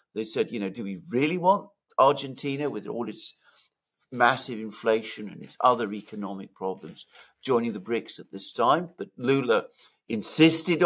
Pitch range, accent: 105-140 Hz, British